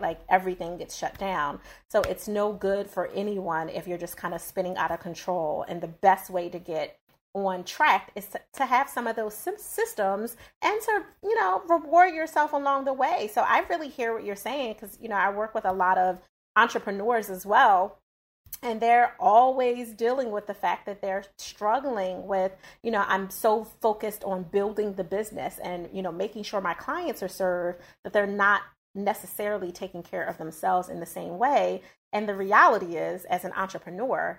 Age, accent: 30-49, American